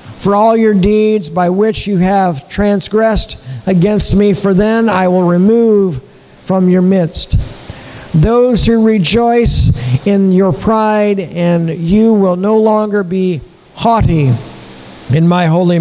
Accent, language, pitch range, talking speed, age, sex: American, English, 140-215 Hz, 135 wpm, 50-69, male